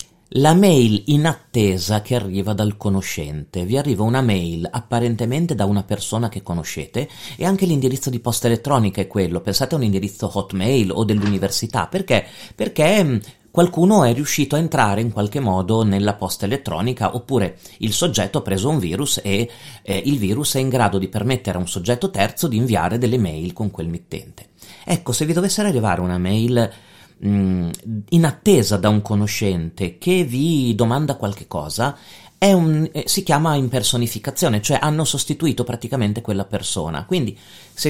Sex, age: male, 30-49